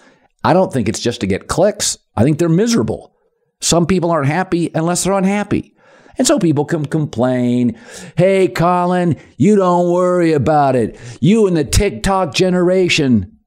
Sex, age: male, 50-69